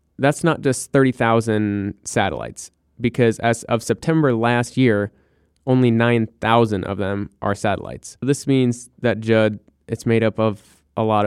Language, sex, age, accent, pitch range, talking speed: English, male, 20-39, American, 110-125 Hz, 145 wpm